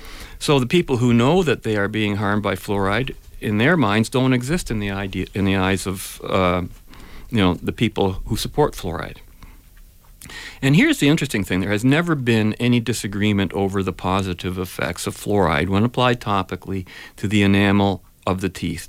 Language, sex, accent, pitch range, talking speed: English, male, American, 95-140 Hz, 185 wpm